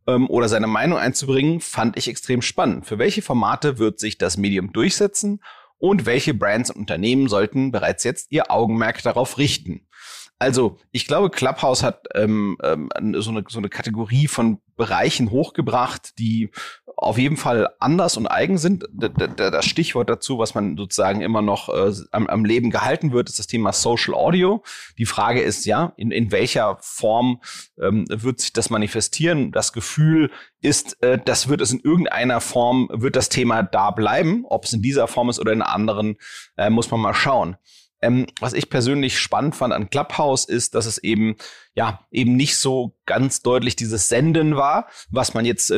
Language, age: German, 30-49